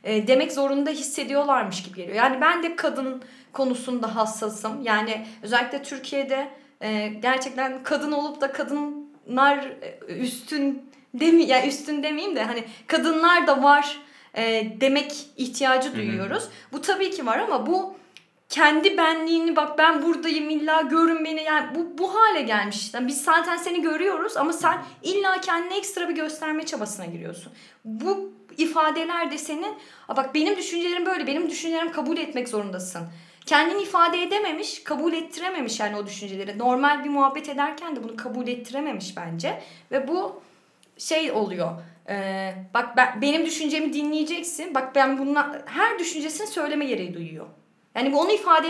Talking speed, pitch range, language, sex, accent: 145 wpm, 225-325 Hz, Turkish, female, native